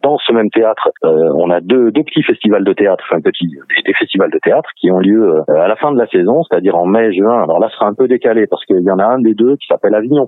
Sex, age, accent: male, 40-59, French